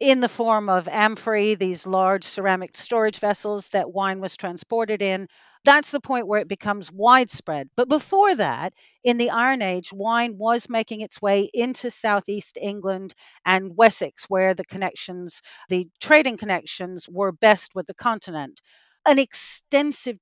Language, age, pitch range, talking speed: English, 50-69, 195-245 Hz, 155 wpm